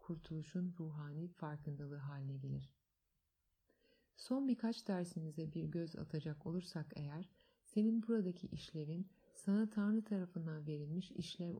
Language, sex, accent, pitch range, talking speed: Turkish, female, native, 155-185 Hz, 110 wpm